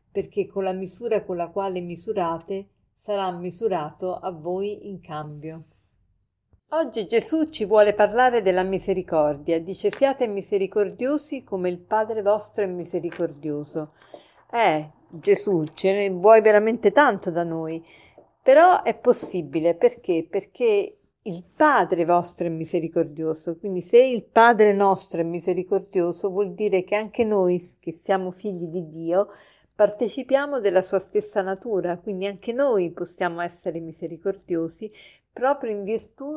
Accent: native